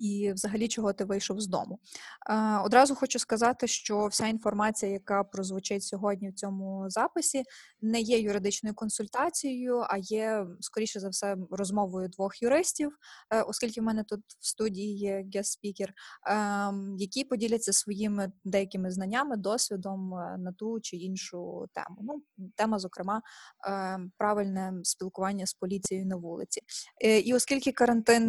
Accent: native